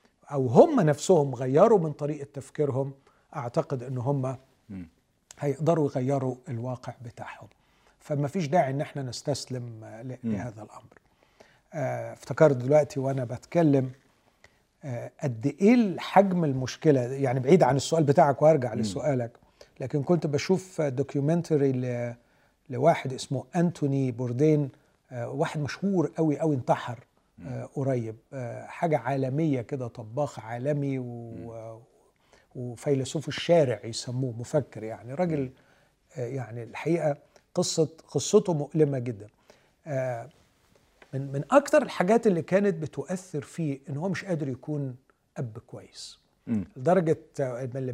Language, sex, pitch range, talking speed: Arabic, male, 125-160 Hz, 110 wpm